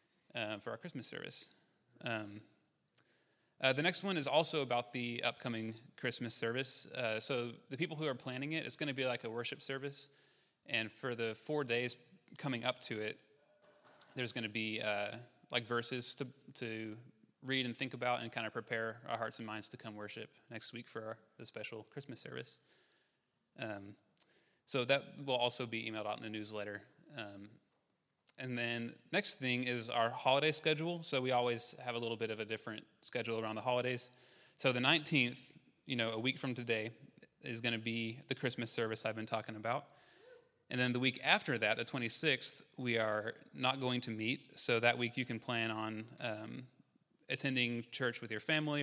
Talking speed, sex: 190 wpm, male